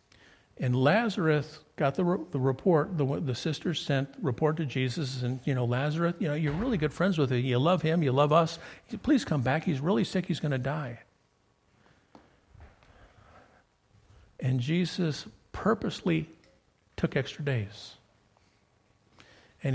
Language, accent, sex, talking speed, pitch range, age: English, American, male, 150 wpm, 110-170 Hz, 50-69